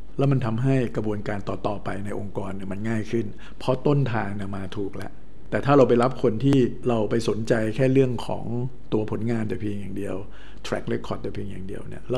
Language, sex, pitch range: Thai, male, 105-125 Hz